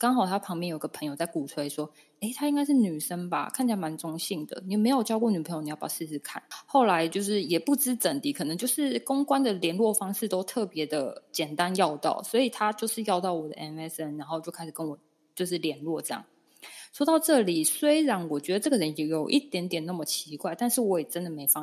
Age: 20-39